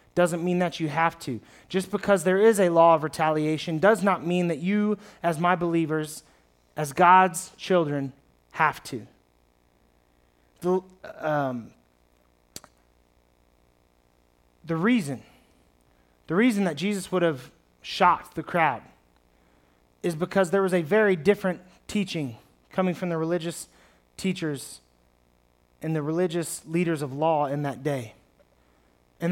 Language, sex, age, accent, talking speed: English, male, 30-49, American, 125 wpm